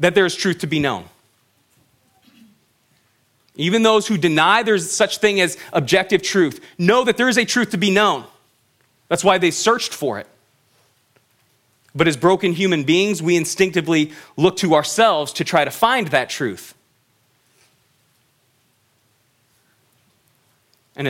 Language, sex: English, male